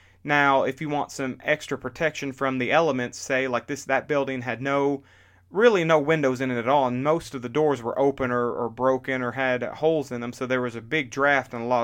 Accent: American